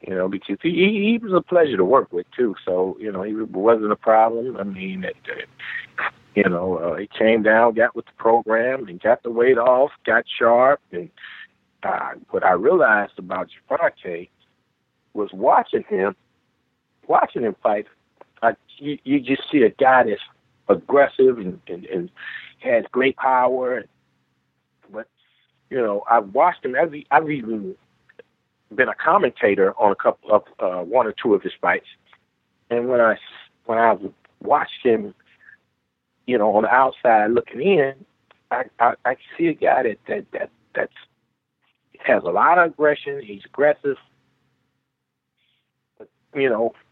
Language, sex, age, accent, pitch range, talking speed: English, male, 50-69, American, 110-145 Hz, 160 wpm